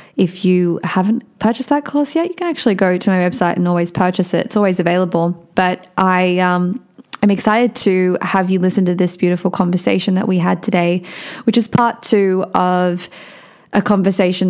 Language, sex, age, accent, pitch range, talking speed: English, female, 20-39, Australian, 185-210 Hz, 185 wpm